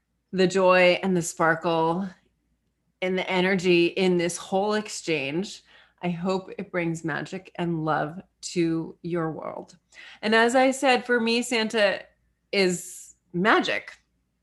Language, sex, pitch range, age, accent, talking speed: English, female, 175-220 Hz, 30-49, American, 130 wpm